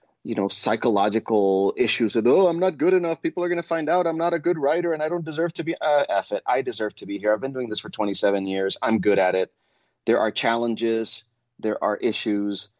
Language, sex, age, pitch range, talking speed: English, male, 30-49, 100-125 Hz, 240 wpm